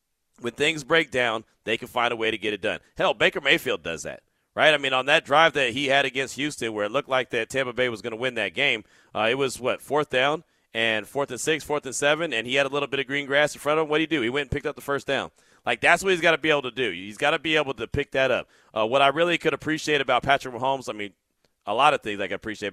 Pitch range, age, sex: 125-170 Hz, 40-59, male